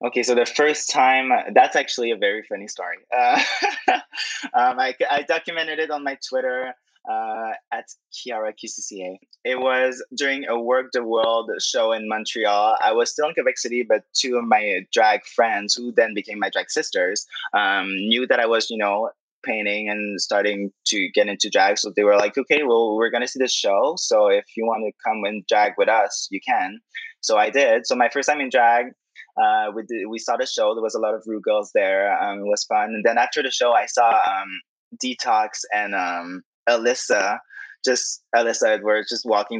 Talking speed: 200 wpm